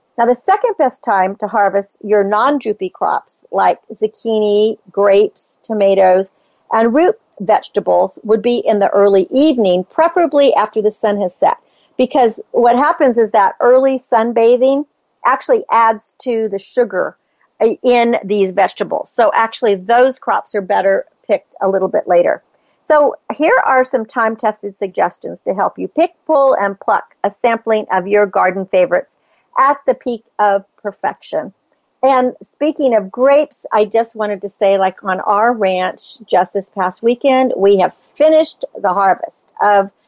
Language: English